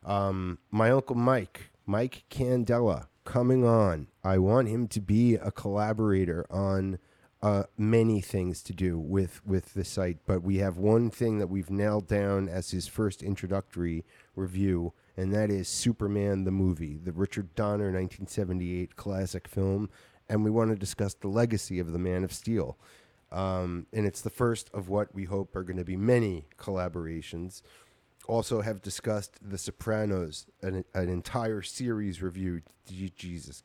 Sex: male